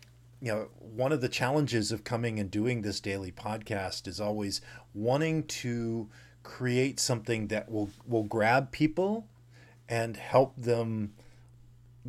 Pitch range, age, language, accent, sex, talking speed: 110-125 Hz, 40-59, English, American, male, 140 wpm